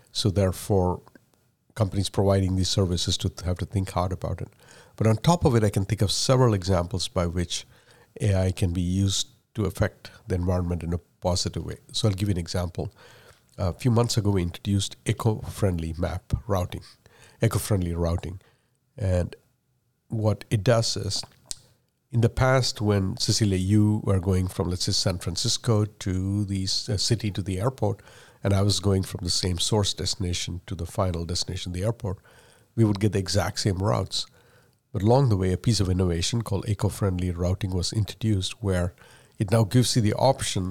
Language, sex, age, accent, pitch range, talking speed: English, male, 50-69, Indian, 95-115 Hz, 180 wpm